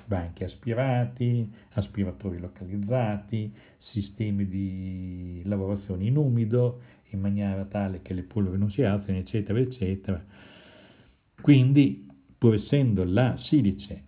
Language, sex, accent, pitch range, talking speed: Italian, male, native, 95-120 Hz, 105 wpm